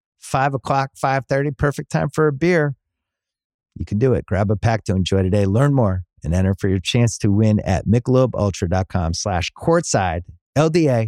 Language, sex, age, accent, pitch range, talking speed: English, male, 30-49, American, 105-145 Hz, 175 wpm